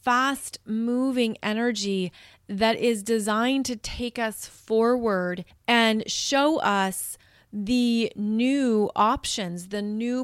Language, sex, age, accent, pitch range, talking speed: English, female, 30-49, American, 205-245 Hz, 100 wpm